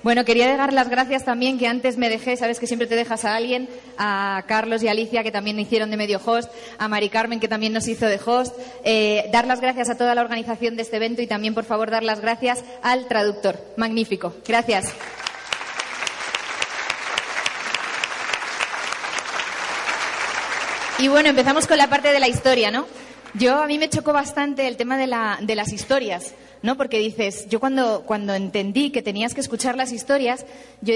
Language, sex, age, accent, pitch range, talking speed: Spanish, female, 20-39, Spanish, 215-255 Hz, 185 wpm